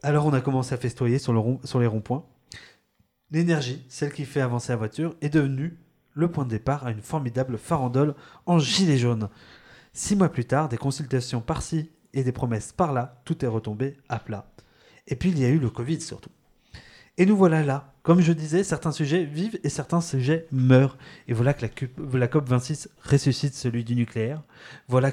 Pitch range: 125-160 Hz